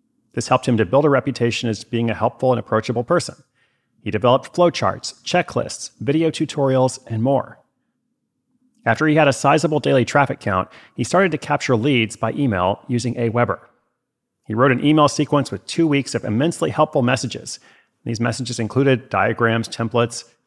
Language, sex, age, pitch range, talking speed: English, male, 30-49, 115-150 Hz, 165 wpm